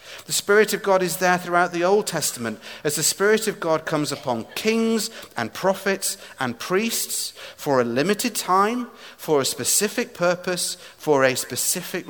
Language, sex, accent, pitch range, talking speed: English, male, British, 130-185 Hz, 165 wpm